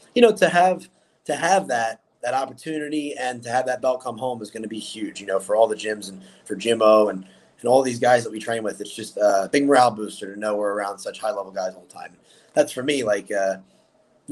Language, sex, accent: English, male, American